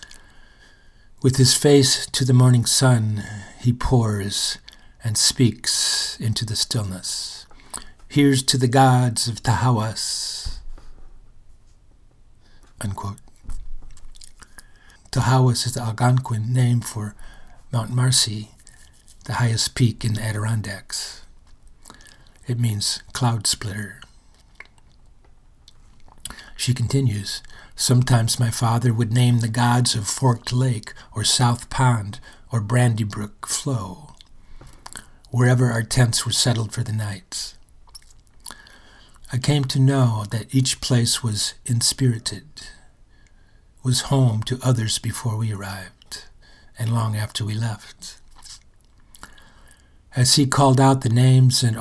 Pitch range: 110-125 Hz